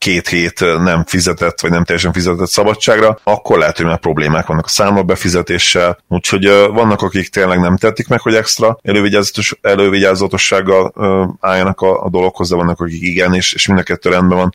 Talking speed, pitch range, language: 175 wpm, 85-95 Hz, Hungarian